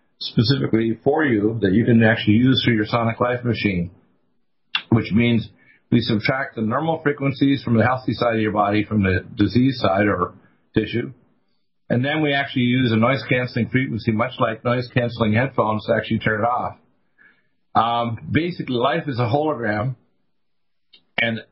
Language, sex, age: English, male, 50-69